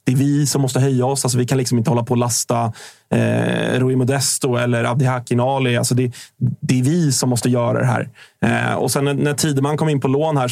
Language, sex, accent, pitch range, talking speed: Swedish, male, native, 120-140 Hz, 250 wpm